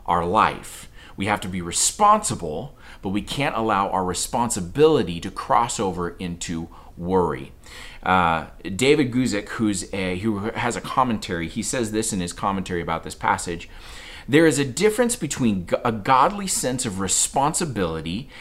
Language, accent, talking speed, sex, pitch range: English, American, 150 wpm, male, 85-125 Hz